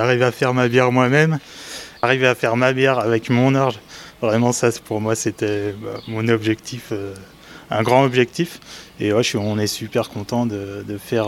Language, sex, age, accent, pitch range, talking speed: French, male, 20-39, French, 105-120 Hz, 195 wpm